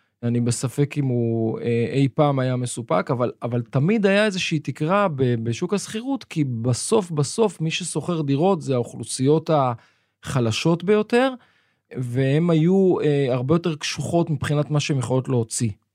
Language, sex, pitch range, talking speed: Hebrew, male, 125-170 Hz, 145 wpm